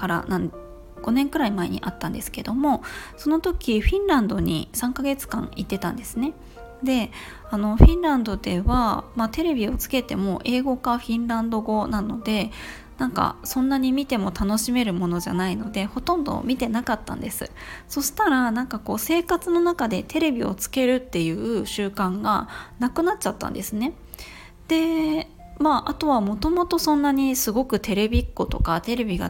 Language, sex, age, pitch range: Japanese, female, 20-39, 195-275 Hz